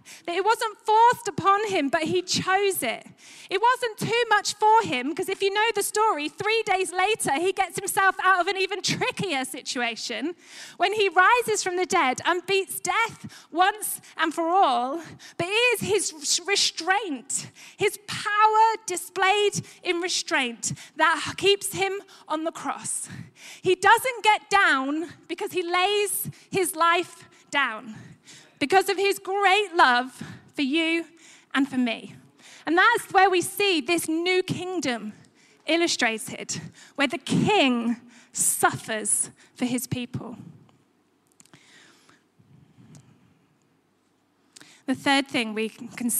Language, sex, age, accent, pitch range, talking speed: English, female, 20-39, British, 275-390 Hz, 135 wpm